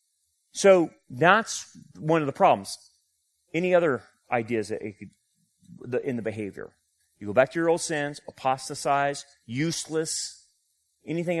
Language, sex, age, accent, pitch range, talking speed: English, male, 30-49, American, 100-150 Hz, 135 wpm